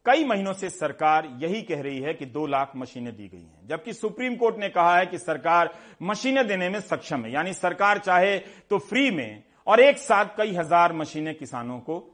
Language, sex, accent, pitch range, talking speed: Hindi, male, native, 145-195 Hz, 210 wpm